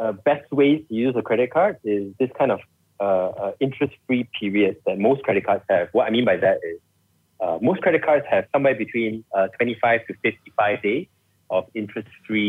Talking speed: 200 wpm